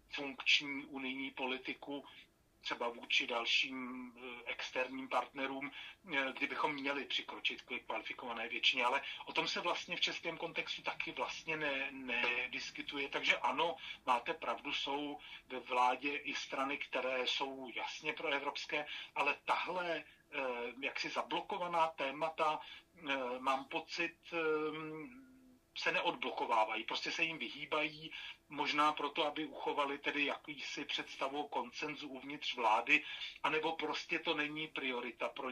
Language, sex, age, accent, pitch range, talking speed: Czech, male, 40-59, native, 130-150 Hz, 115 wpm